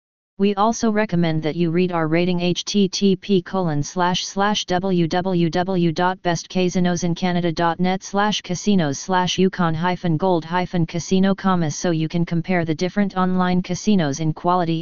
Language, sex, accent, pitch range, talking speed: English, female, American, 165-190 Hz, 115 wpm